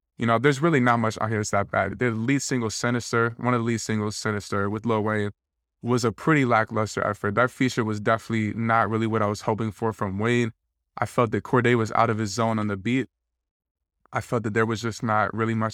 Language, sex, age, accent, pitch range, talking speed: English, male, 20-39, American, 105-125 Hz, 240 wpm